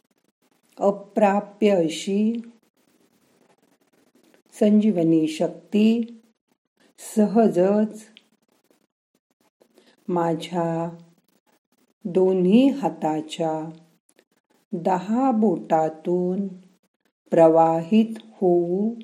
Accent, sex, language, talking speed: native, female, Marathi, 35 wpm